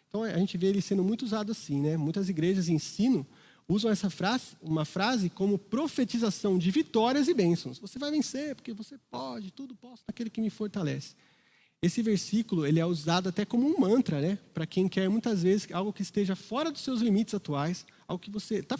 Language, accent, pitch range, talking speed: Portuguese, Brazilian, 165-220 Hz, 205 wpm